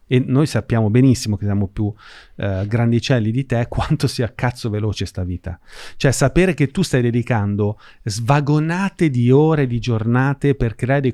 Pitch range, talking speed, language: 105-135 Hz, 165 wpm, Italian